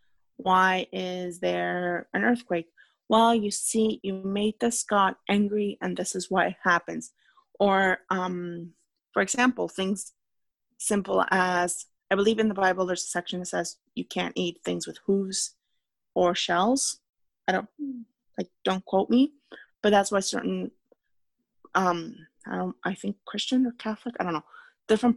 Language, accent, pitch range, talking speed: English, American, 175-205 Hz, 155 wpm